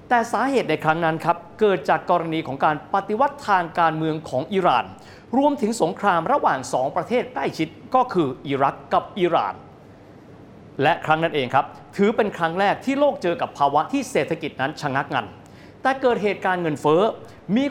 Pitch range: 145-230 Hz